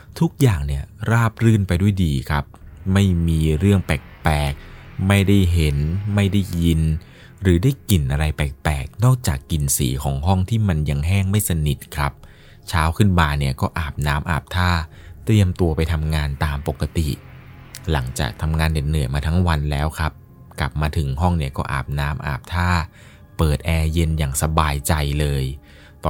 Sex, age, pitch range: male, 20-39, 75-95 Hz